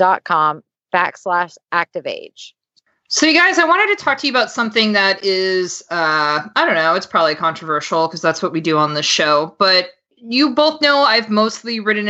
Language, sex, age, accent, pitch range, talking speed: English, female, 20-39, American, 165-225 Hz, 200 wpm